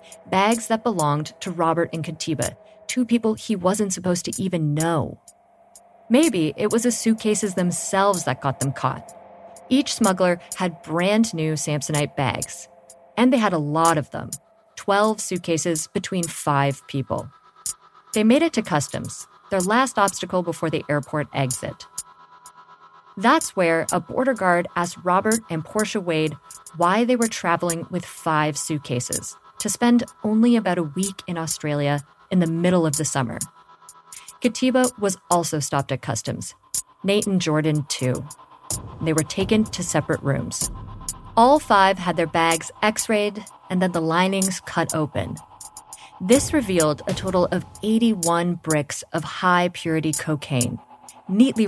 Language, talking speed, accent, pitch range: English, 145 wpm, American, 150-205 Hz